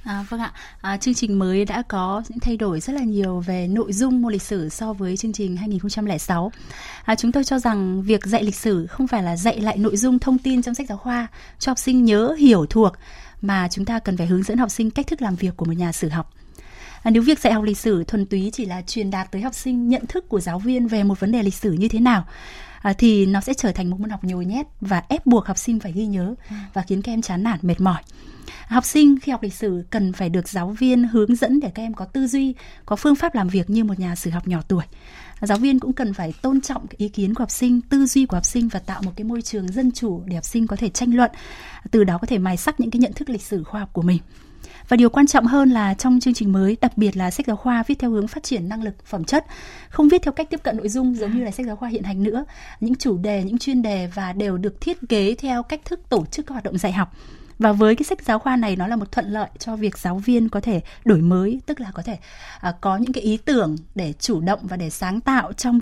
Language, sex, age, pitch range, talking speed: Vietnamese, female, 20-39, 195-245 Hz, 280 wpm